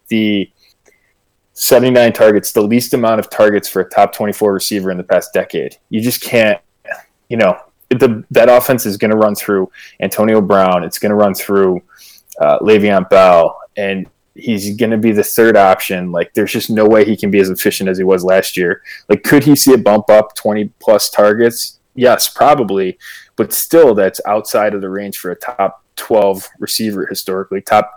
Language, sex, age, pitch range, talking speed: English, male, 20-39, 95-115 Hz, 190 wpm